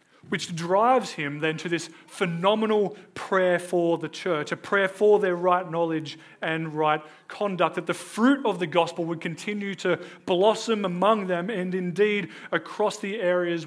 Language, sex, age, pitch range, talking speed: English, male, 30-49, 155-190 Hz, 160 wpm